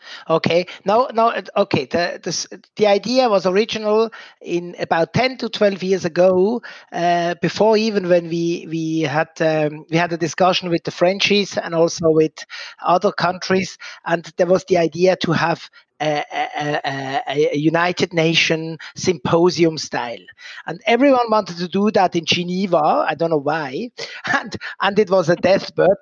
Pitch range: 165-200 Hz